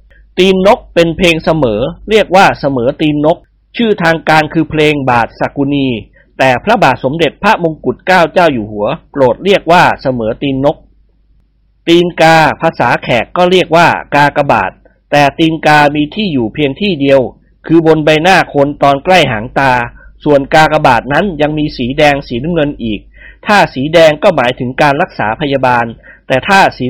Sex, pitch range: male, 135-175 Hz